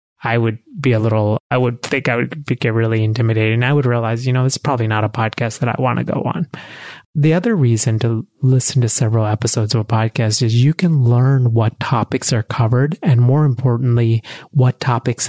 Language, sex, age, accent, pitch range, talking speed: English, male, 30-49, American, 115-135 Hz, 215 wpm